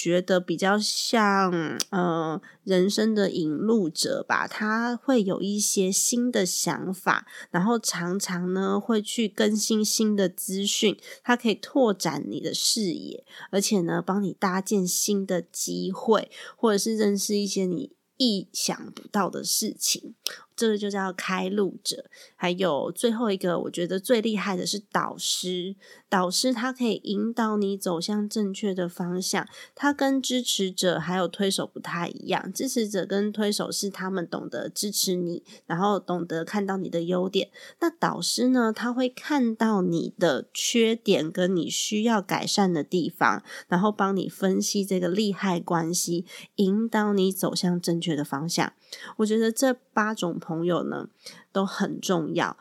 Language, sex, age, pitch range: Chinese, female, 20-39, 180-220 Hz